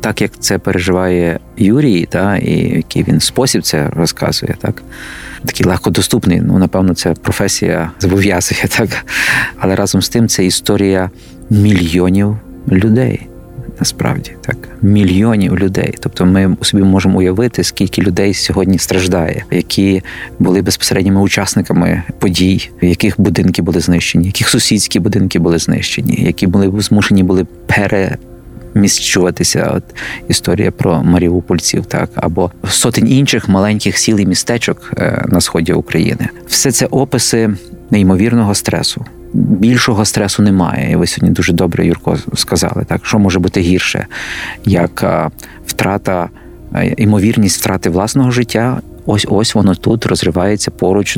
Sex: male